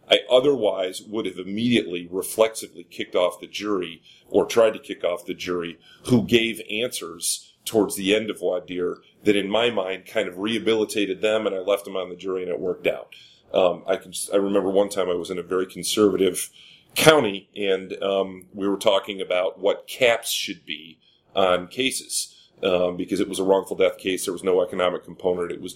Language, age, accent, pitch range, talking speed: English, 30-49, American, 95-125 Hz, 195 wpm